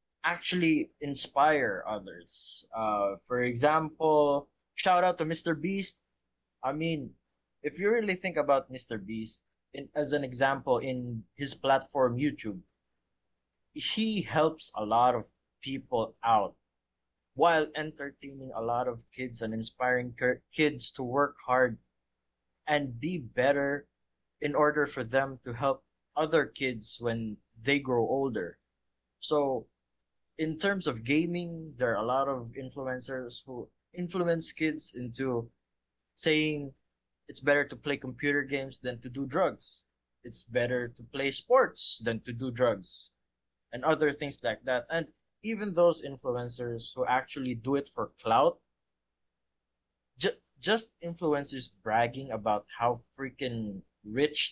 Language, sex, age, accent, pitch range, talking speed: Filipino, male, 20-39, native, 115-150 Hz, 130 wpm